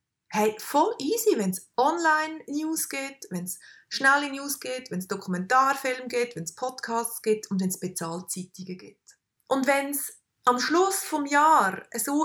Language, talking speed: German, 155 wpm